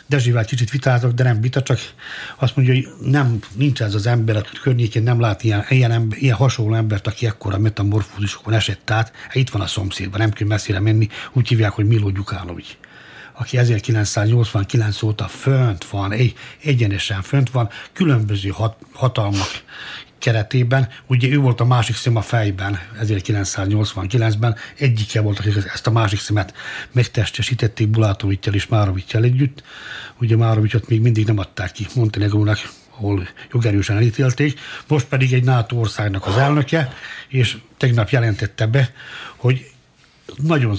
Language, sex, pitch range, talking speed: Hungarian, male, 105-130 Hz, 150 wpm